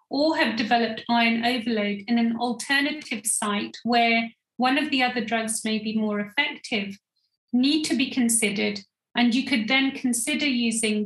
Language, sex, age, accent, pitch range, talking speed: English, female, 40-59, British, 220-270 Hz, 155 wpm